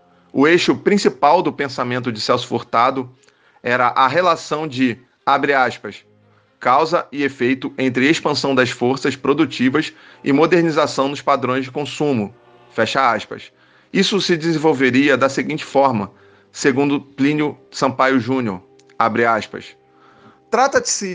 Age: 40-59